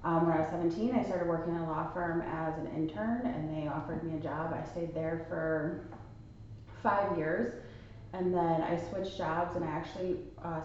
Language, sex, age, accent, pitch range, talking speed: English, female, 30-49, American, 155-185 Hz, 205 wpm